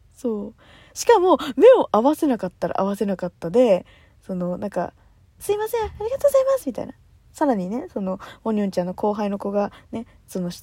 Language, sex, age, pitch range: Japanese, female, 20-39, 205-320 Hz